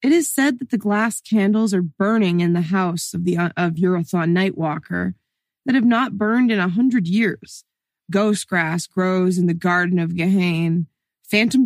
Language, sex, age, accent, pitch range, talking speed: English, female, 20-39, American, 175-230 Hz, 170 wpm